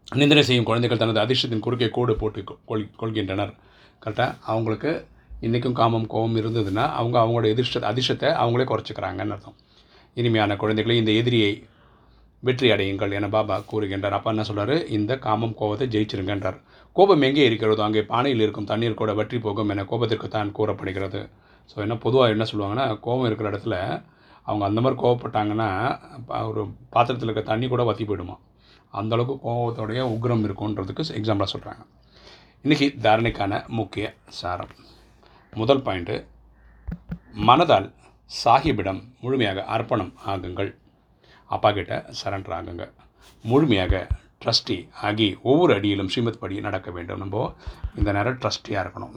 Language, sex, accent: Tamil, male, native